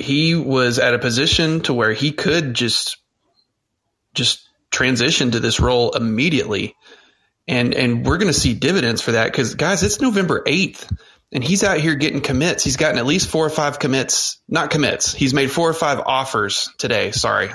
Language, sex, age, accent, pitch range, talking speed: English, male, 30-49, American, 120-150 Hz, 185 wpm